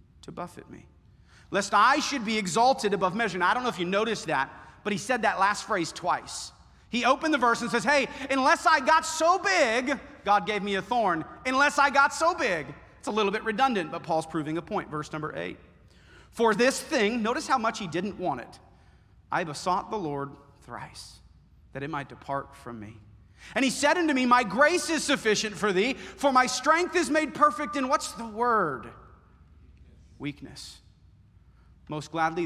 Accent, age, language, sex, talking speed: American, 40-59, English, male, 195 wpm